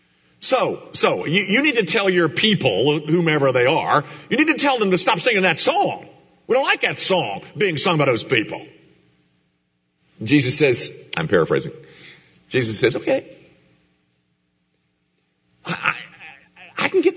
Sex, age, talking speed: male, 50-69, 155 wpm